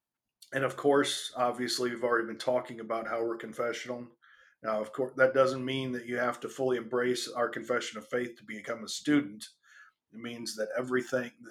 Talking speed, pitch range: 190 wpm, 120-135 Hz